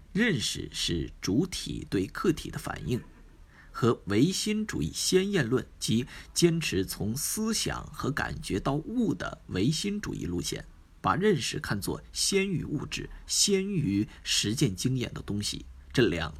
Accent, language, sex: native, Chinese, male